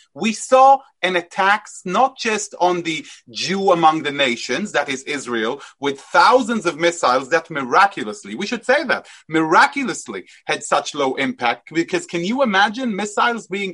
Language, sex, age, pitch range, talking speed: English, male, 30-49, 170-250 Hz, 155 wpm